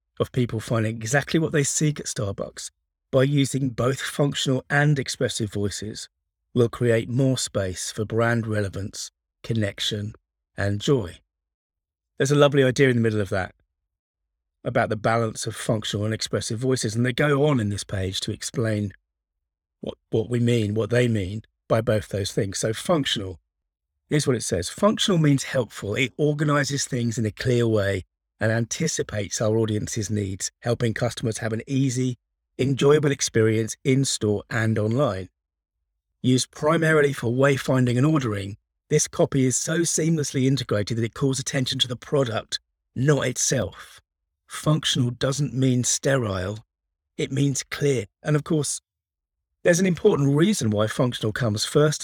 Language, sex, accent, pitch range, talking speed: English, male, British, 100-135 Hz, 155 wpm